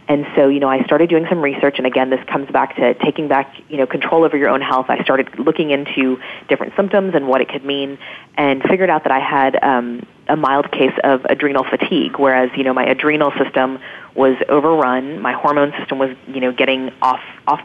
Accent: American